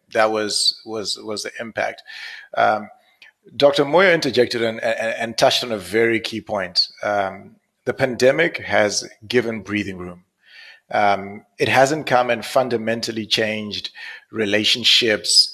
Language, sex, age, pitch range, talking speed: English, male, 30-49, 105-130 Hz, 130 wpm